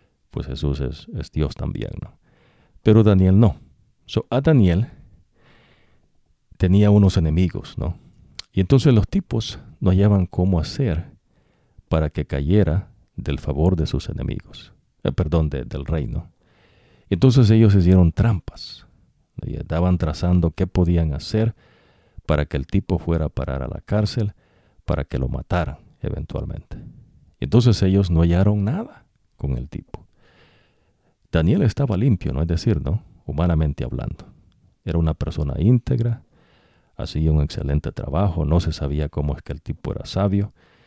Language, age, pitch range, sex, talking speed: English, 50-69, 75-100 Hz, male, 140 wpm